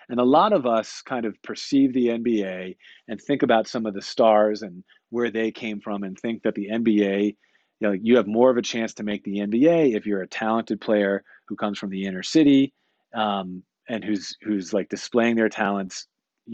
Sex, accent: male, American